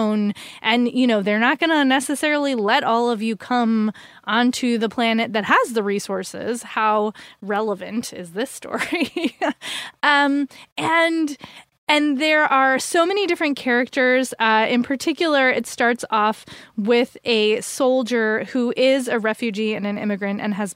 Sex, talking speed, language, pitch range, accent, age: female, 150 wpm, English, 215-265 Hz, American, 20-39